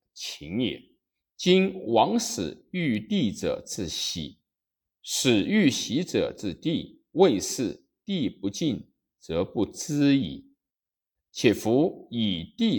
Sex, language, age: male, Chinese, 50-69